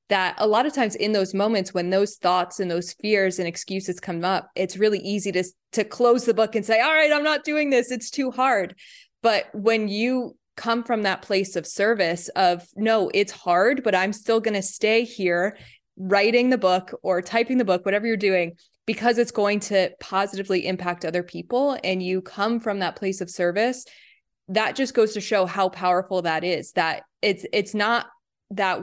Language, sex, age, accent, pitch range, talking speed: English, female, 20-39, American, 180-215 Hz, 200 wpm